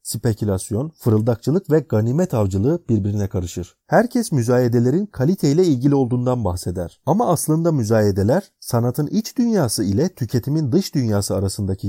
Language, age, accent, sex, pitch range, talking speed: Turkish, 30-49, native, male, 105-150 Hz, 120 wpm